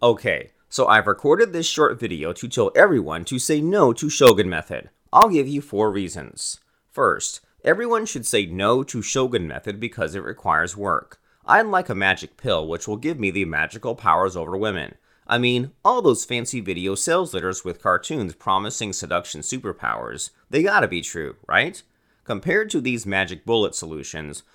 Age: 30-49